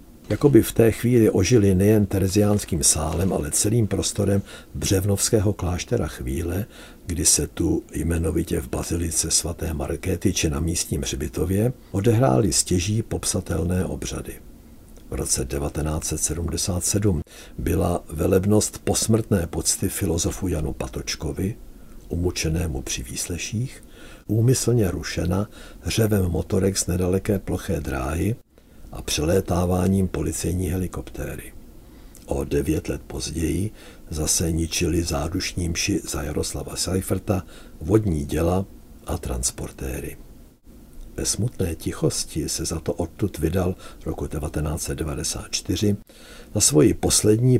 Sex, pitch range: male, 80-100 Hz